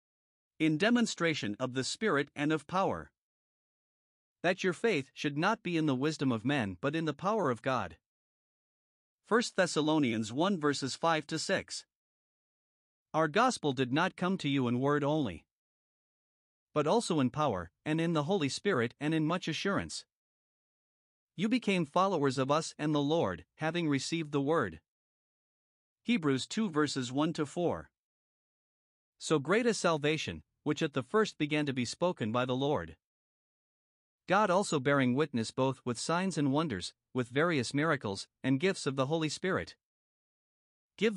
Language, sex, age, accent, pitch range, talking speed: English, male, 50-69, American, 130-170 Hz, 150 wpm